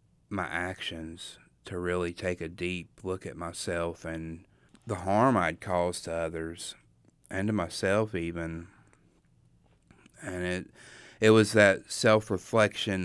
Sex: male